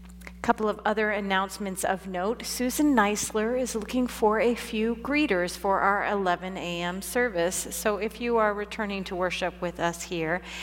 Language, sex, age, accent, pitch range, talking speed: English, female, 40-59, American, 165-205 Hz, 165 wpm